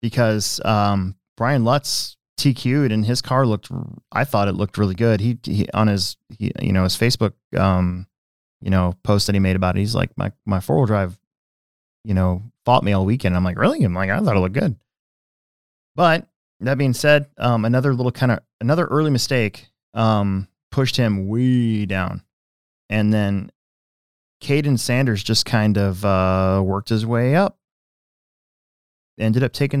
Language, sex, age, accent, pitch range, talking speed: English, male, 20-39, American, 100-130 Hz, 175 wpm